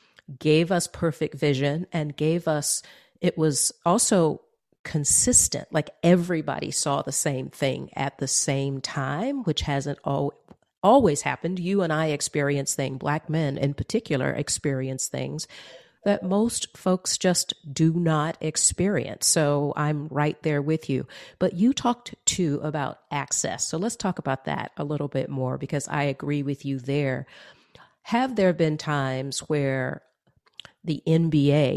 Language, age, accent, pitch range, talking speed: English, 40-59, American, 140-170 Hz, 145 wpm